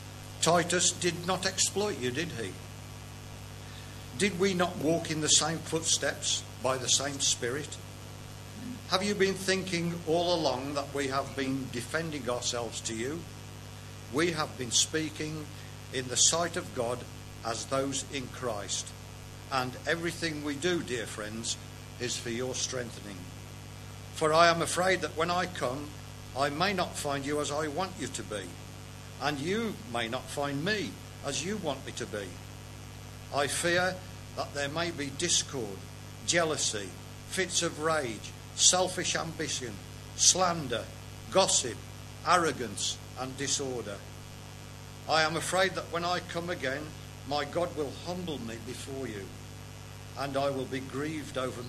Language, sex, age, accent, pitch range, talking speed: English, male, 60-79, British, 110-155 Hz, 145 wpm